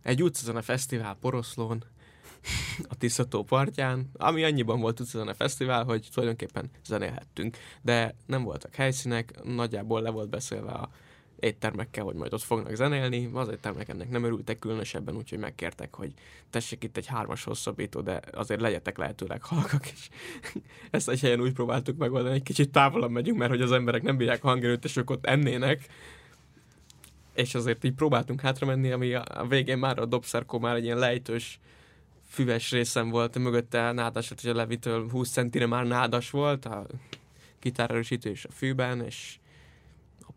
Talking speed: 160 wpm